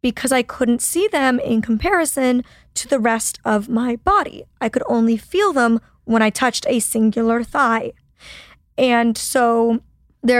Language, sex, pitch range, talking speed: English, female, 230-260 Hz, 155 wpm